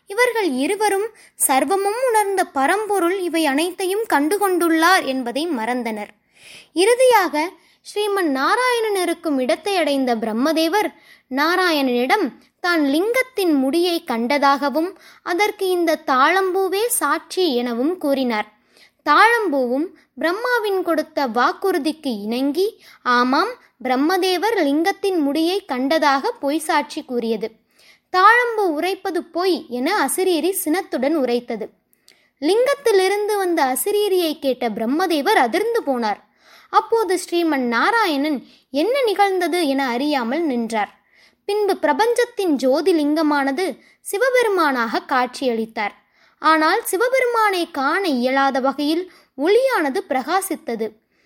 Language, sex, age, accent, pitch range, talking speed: Tamil, female, 20-39, native, 275-390 Hz, 90 wpm